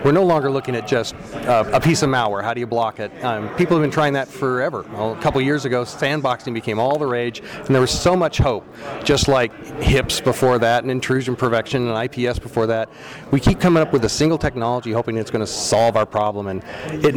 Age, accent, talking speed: 30-49, American, 240 wpm